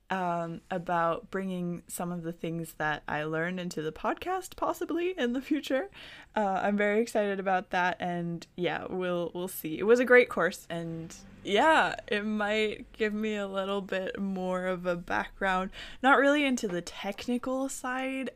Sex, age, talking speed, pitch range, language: female, 20-39, 170 wpm, 165-235 Hz, English